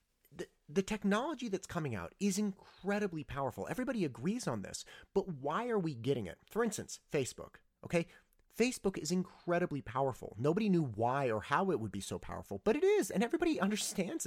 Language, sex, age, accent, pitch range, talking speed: English, male, 30-49, American, 110-175 Hz, 175 wpm